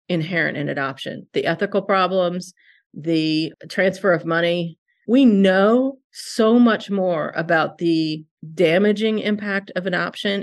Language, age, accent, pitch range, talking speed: English, 40-59, American, 170-240 Hz, 120 wpm